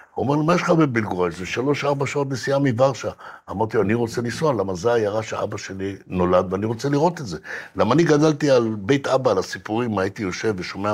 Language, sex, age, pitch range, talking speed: Hebrew, male, 60-79, 110-145 Hz, 225 wpm